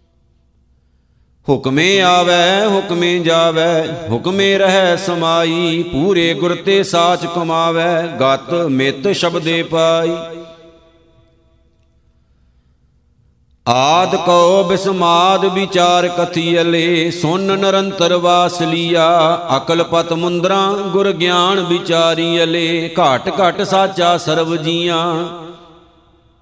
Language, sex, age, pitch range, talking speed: Punjabi, male, 50-69, 165-180 Hz, 75 wpm